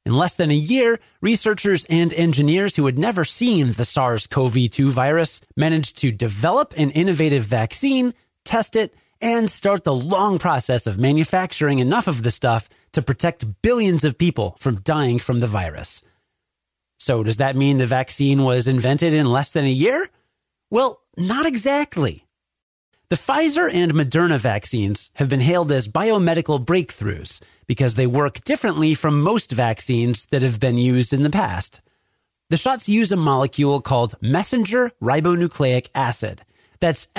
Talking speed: 155 wpm